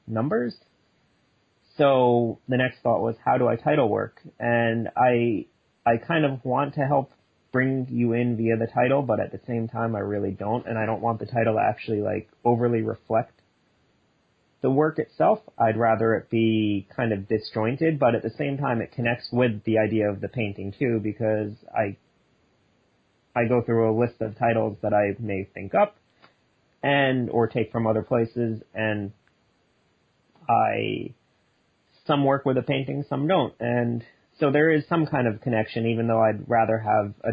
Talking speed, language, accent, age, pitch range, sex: 180 wpm, English, American, 30-49, 110-125 Hz, male